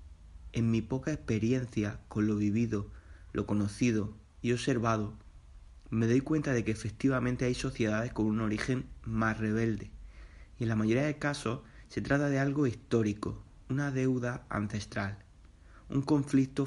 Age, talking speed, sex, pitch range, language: 30-49, 145 wpm, male, 105-120 Hz, Spanish